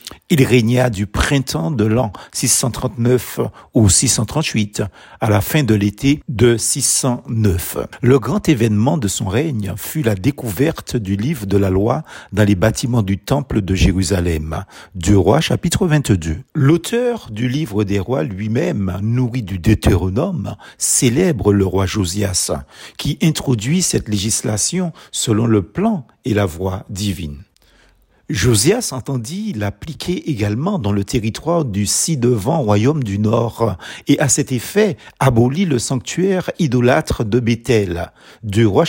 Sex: male